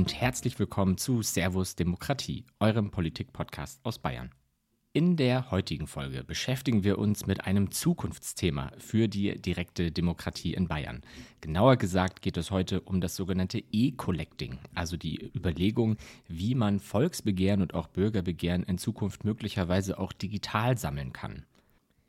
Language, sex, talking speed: German, male, 140 wpm